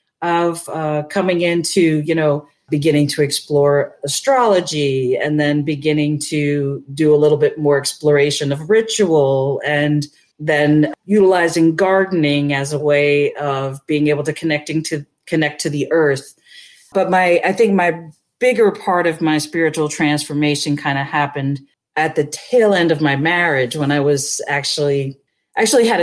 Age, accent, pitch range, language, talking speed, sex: 40-59, American, 145-170 Hz, English, 150 wpm, female